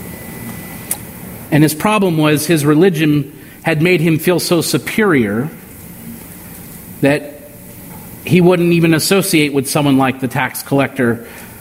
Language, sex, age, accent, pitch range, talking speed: English, male, 40-59, American, 135-185 Hz, 120 wpm